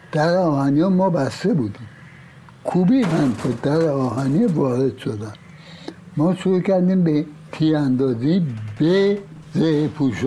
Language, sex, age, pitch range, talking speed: Persian, male, 60-79, 140-180 Hz, 125 wpm